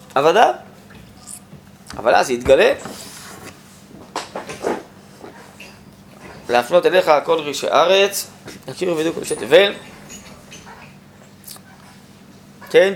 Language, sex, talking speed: Hebrew, male, 75 wpm